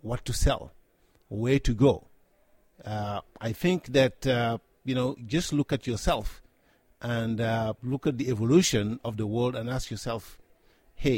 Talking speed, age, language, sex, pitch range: 160 wpm, 50-69, English, male, 115-145 Hz